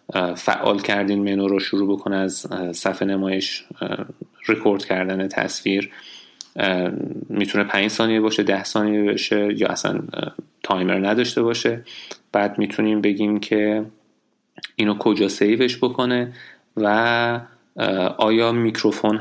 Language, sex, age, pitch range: Persian, male, 30-49, 100-110 Hz